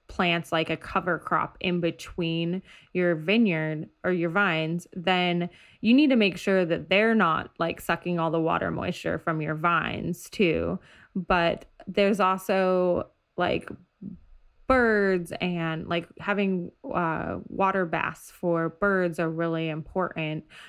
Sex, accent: female, American